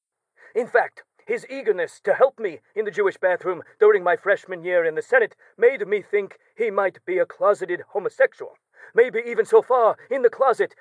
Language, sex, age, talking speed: English, male, 40-59, 190 wpm